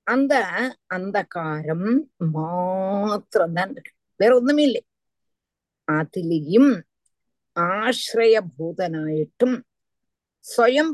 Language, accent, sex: Tamil, native, female